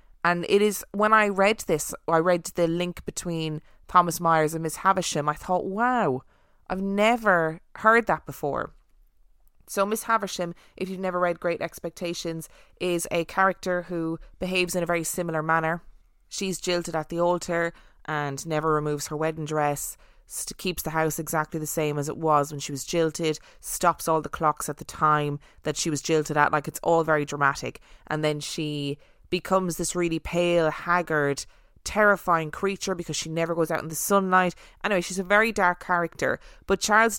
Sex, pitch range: female, 155-185 Hz